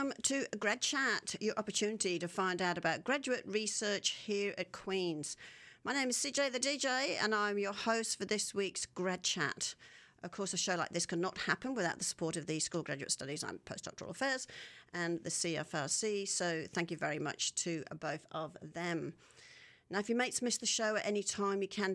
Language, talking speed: English, 200 wpm